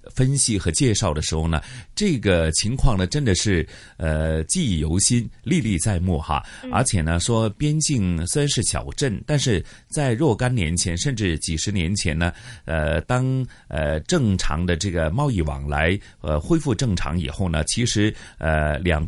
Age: 30-49